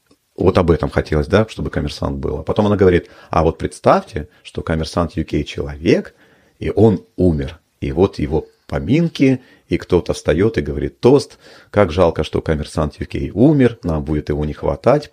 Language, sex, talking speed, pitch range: Russian, male, 165 wpm, 80-95 Hz